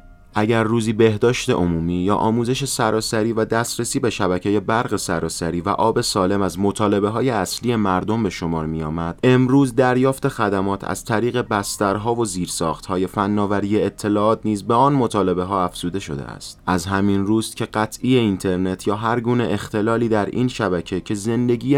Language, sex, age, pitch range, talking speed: Persian, male, 30-49, 95-115 Hz, 165 wpm